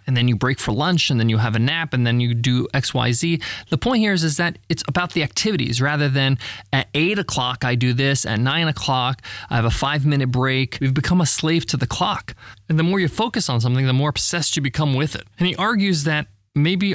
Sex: male